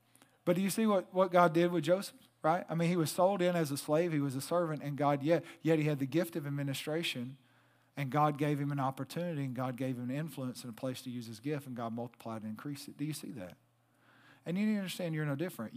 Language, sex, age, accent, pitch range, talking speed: English, male, 40-59, American, 125-160 Hz, 270 wpm